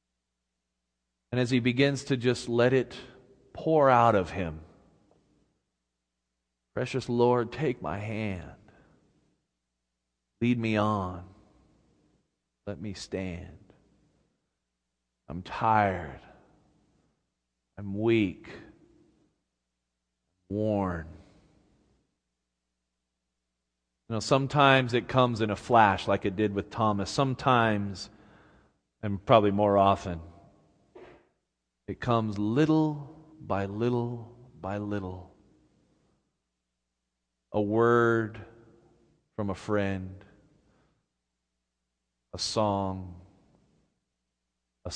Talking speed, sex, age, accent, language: 80 wpm, male, 40-59, American, English